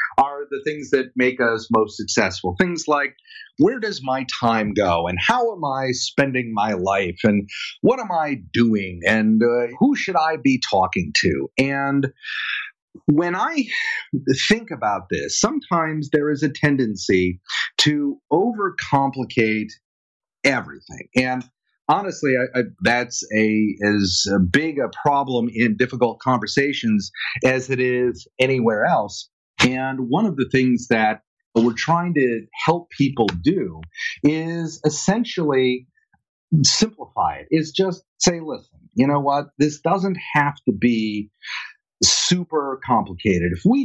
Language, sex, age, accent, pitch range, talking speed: English, male, 40-59, American, 110-160 Hz, 135 wpm